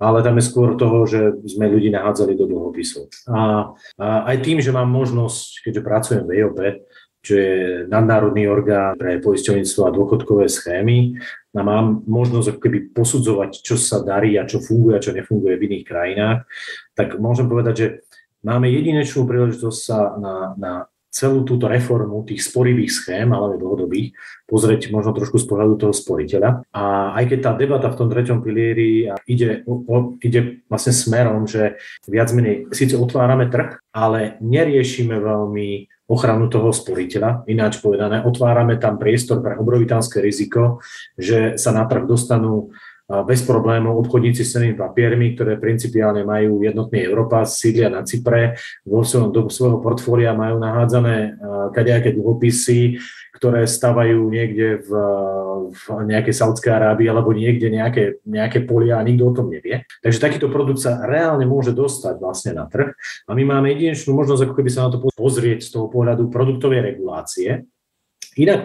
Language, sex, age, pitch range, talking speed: Slovak, male, 40-59, 110-125 Hz, 155 wpm